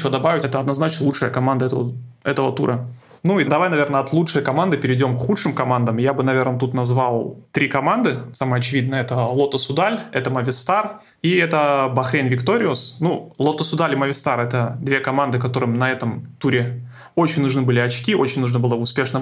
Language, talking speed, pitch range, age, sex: Russian, 180 wpm, 125-145 Hz, 30-49, male